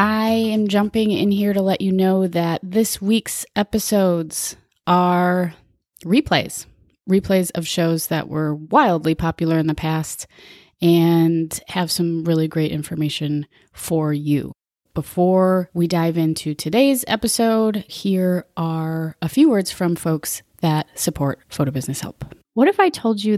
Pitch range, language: 165-210 Hz, English